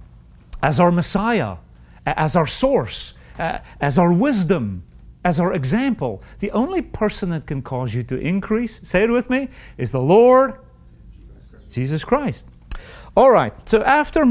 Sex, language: male, English